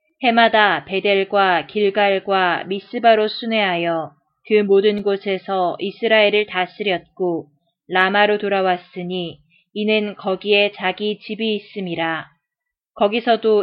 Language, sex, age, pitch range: Korean, female, 20-39, 175-215 Hz